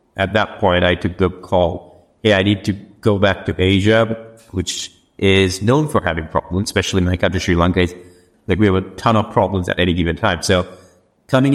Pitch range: 90-110 Hz